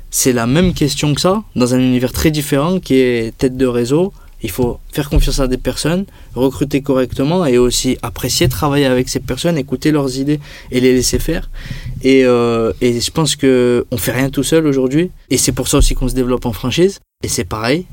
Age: 20-39